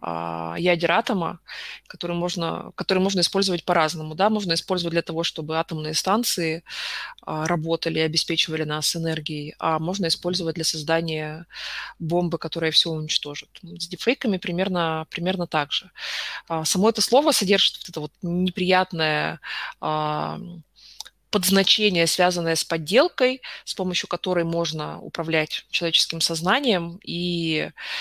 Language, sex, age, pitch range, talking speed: Russian, female, 20-39, 160-185 Hz, 130 wpm